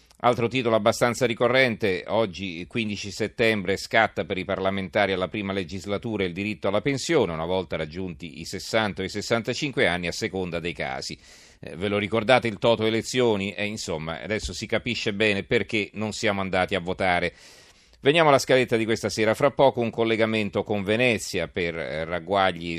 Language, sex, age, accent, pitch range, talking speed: Italian, male, 40-59, native, 95-115 Hz, 170 wpm